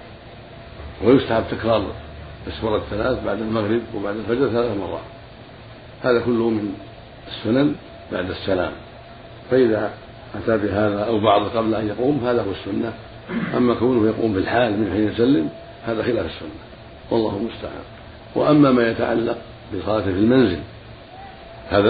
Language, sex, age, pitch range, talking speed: Arabic, male, 60-79, 105-120 Hz, 125 wpm